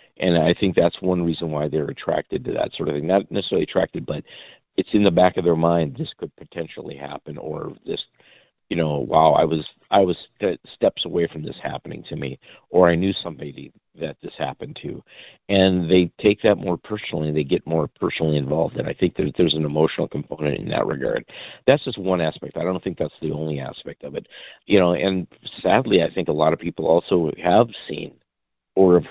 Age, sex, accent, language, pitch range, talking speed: 50-69, male, American, English, 80-95 Hz, 210 wpm